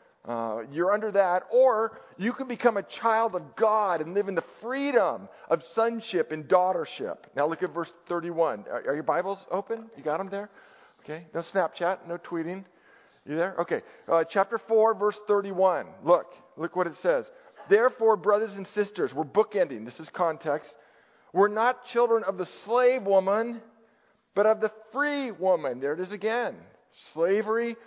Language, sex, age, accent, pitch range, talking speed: English, male, 50-69, American, 170-225 Hz, 170 wpm